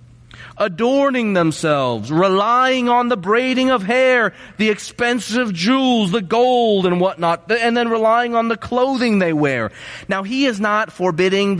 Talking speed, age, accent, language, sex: 145 wpm, 30-49, American, English, male